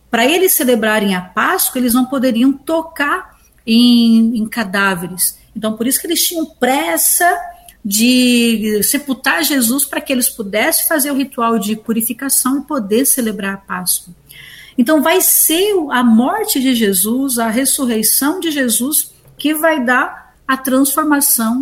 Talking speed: 145 wpm